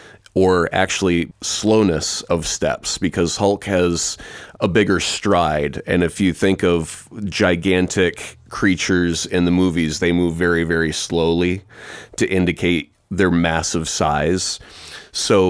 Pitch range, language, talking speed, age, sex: 85-100 Hz, English, 125 wpm, 30-49, male